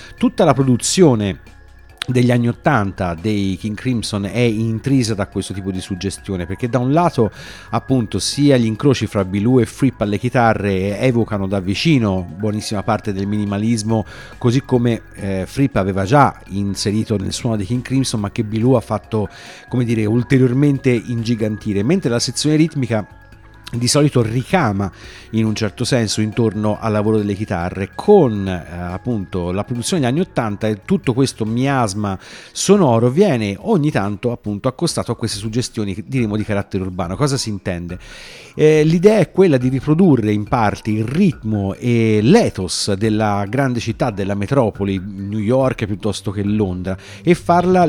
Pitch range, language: 100-130 Hz, Italian